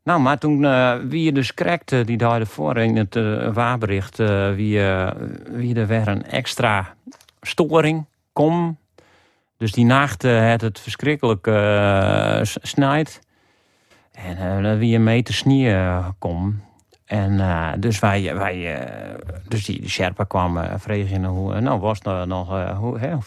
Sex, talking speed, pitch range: male, 155 wpm, 100-125 Hz